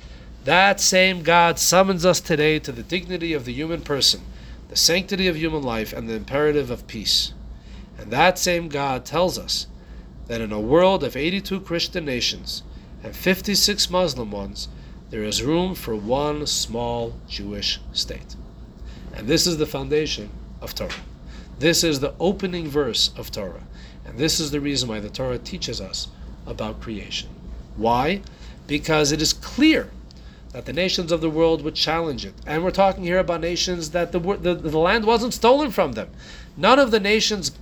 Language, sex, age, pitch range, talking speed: English, male, 40-59, 115-185 Hz, 170 wpm